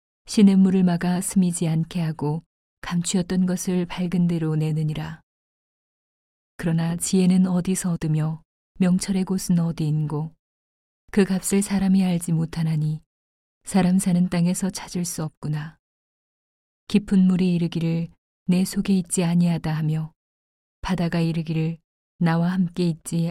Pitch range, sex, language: 155-185 Hz, female, Korean